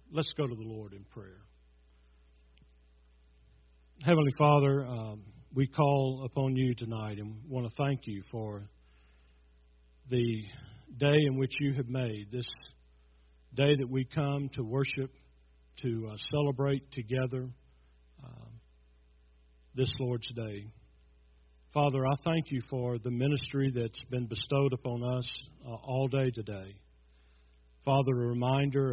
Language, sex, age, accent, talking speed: English, male, 50-69, American, 130 wpm